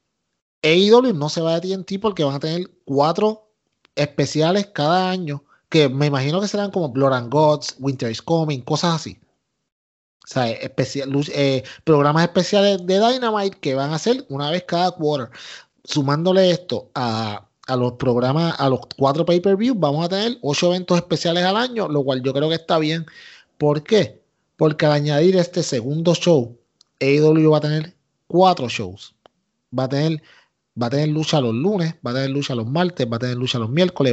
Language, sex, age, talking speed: Spanish, male, 30-49, 185 wpm